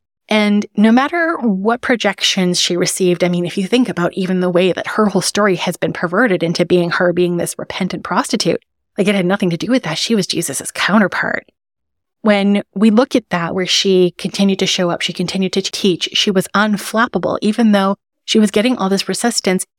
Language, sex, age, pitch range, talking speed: English, female, 30-49, 175-210 Hz, 205 wpm